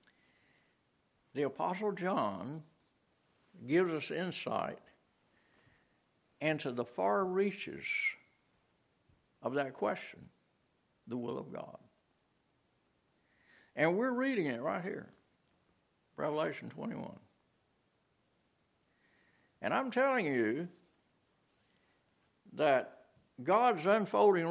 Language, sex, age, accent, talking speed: English, male, 60-79, American, 80 wpm